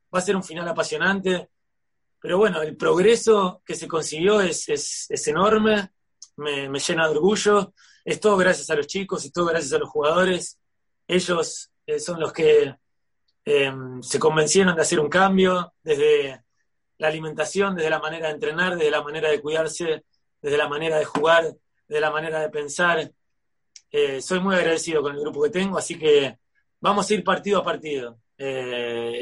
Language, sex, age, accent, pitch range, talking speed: English, male, 30-49, Argentinian, 155-200 Hz, 175 wpm